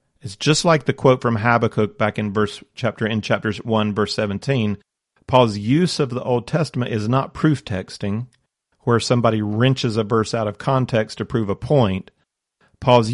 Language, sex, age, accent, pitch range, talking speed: English, male, 40-59, American, 105-125 Hz, 180 wpm